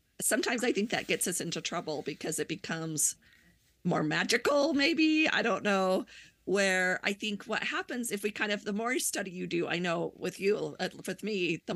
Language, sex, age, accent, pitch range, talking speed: English, female, 40-59, American, 165-195 Hz, 195 wpm